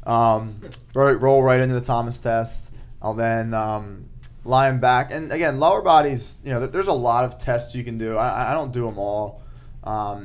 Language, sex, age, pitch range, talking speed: English, male, 20-39, 105-120 Hz, 200 wpm